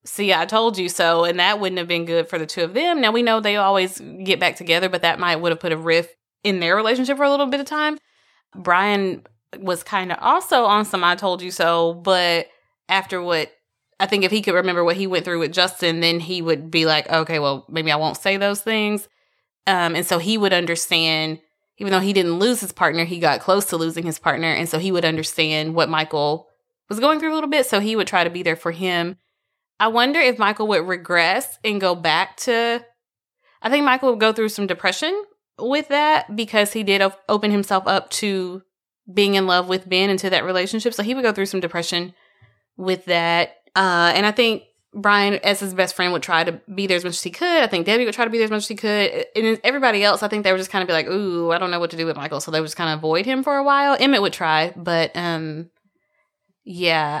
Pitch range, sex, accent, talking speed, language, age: 170-215 Hz, female, American, 250 wpm, English, 20-39